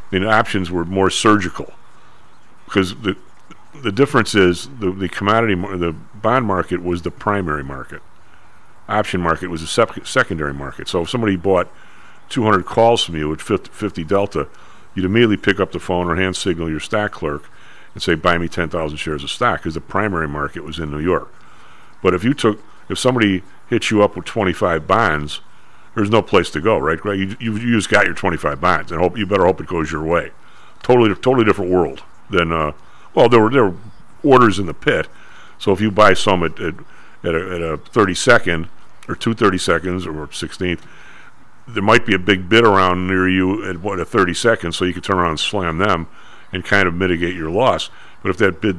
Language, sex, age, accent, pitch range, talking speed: English, male, 50-69, American, 85-105 Hz, 210 wpm